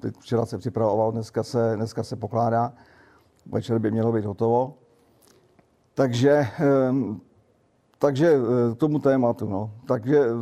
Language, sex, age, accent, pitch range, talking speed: Czech, male, 50-69, native, 120-135 Hz, 120 wpm